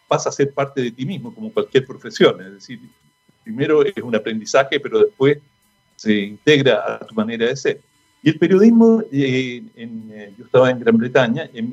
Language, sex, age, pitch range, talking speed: Spanish, male, 50-69, 130-200 Hz, 190 wpm